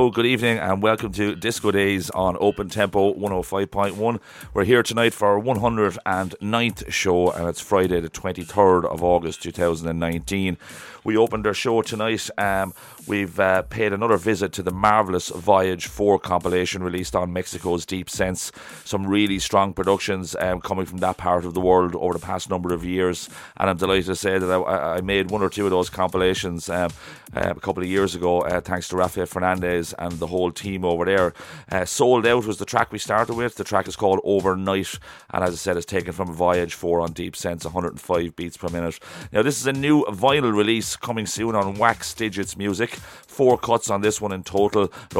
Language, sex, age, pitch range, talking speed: English, male, 30-49, 90-105 Hz, 195 wpm